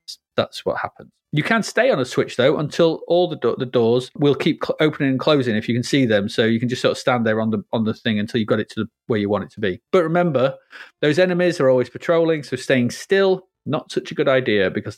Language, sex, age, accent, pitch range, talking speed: English, male, 30-49, British, 125-175 Hz, 275 wpm